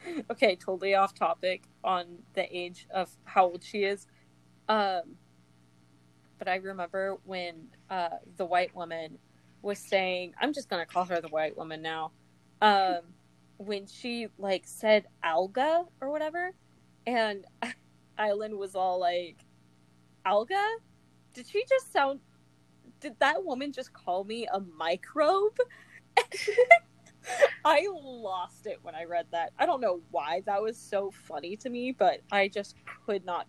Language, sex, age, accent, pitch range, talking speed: English, female, 20-39, American, 150-235 Hz, 145 wpm